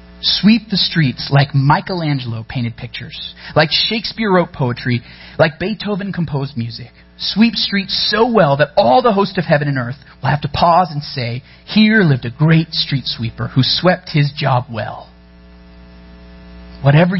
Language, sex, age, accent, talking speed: English, male, 30-49, American, 155 wpm